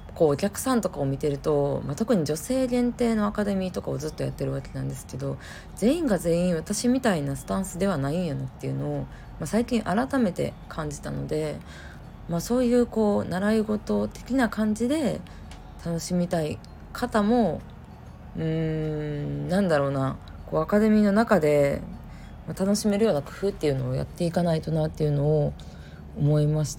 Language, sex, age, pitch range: Japanese, female, 20-39, 140-205 Hz